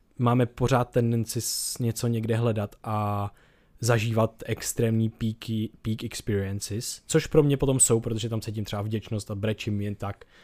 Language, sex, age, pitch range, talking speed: Czech, male, 20-39, 110-130 Hz, 155 wpm